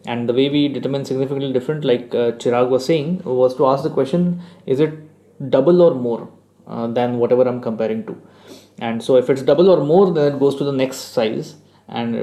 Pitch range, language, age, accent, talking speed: 130-160 Hz, English, 20-39, Indian, 210 wpm